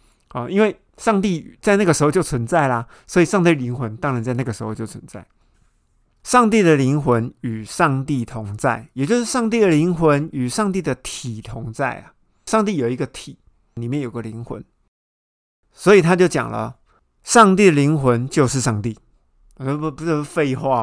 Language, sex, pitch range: Chinese, male, 120-175 Hz